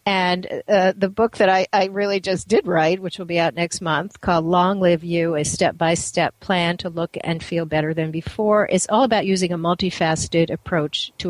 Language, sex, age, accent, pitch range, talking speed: English, female, 50-69, American, 165-205 Hz, 205 wpm